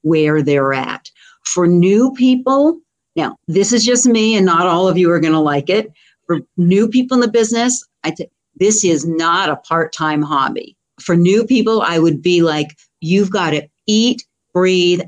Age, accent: 50-69, American